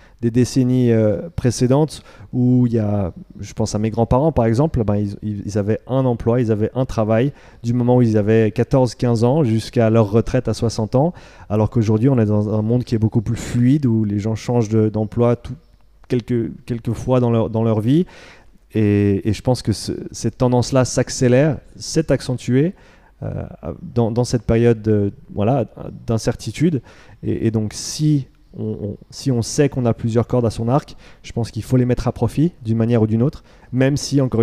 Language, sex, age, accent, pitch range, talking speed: French, male, 30-49, French, 110-125 Hz, 190 wpm